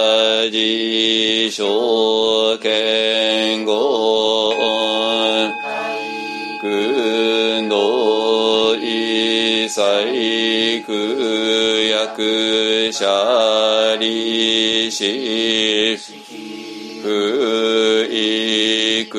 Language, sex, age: Japanese, male, 40-59